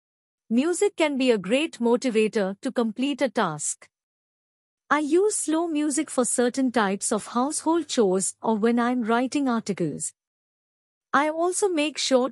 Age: 50-69